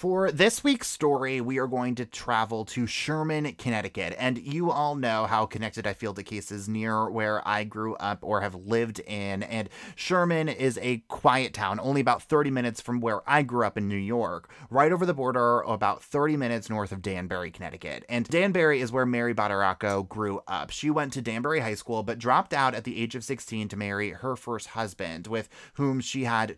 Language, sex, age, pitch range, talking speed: English, male, 30-49, 110-145 Hz, 205 wpm